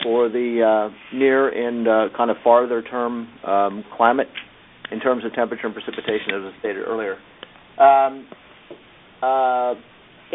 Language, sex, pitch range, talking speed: English, male, 110-135 Hz, 140 wpm